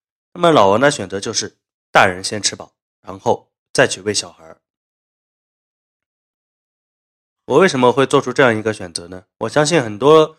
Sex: male